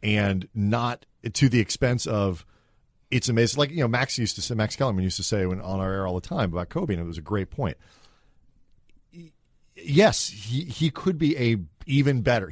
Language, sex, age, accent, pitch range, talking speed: English, male, 40-59, American, 105-135 Hz, 205 wpm